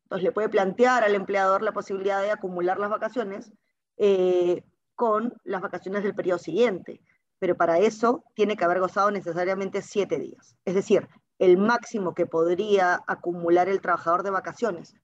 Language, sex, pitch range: Spanish, female, 185-225 Hz